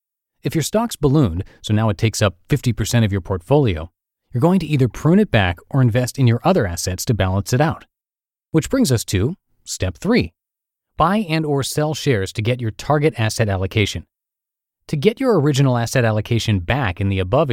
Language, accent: English, American